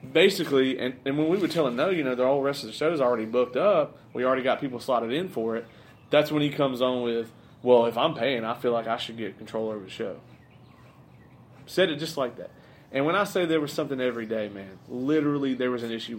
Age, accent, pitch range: 30-49, American, 120-150 Hz